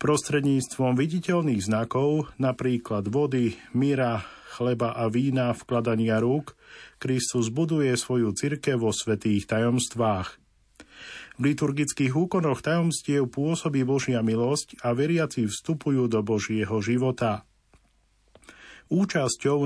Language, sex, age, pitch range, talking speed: Slovak, male, 50-69, 115-145 Hz, 100 wpm